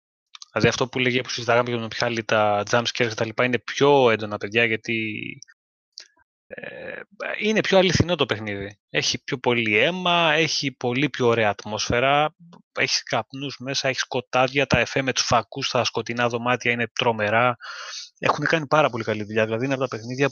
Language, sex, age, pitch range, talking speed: Greek, male, 20-39, 110-135 Hz, 175 wpm